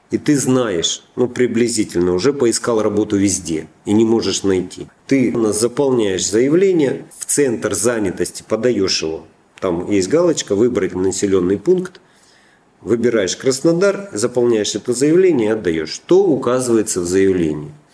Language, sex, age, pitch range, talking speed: Russian, male, 40-59, 95-135 Hz, 135 wpm